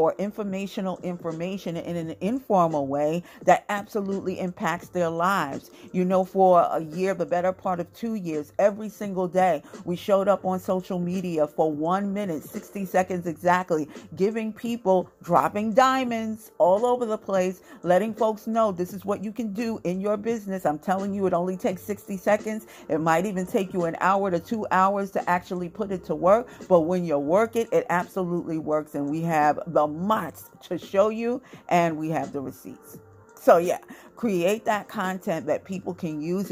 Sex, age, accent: female, 50-69, American